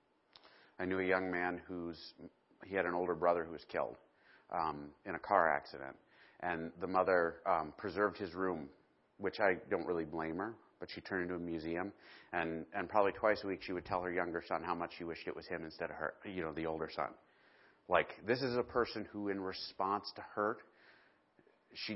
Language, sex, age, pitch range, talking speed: English, male, 30-49, 85-105 Hz, 210 wpm